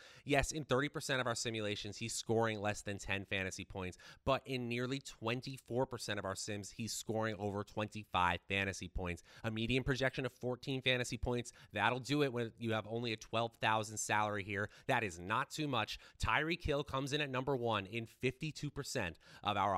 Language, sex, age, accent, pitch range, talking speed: English, male, 30-49, American, 105-145 Hz, 180 wpm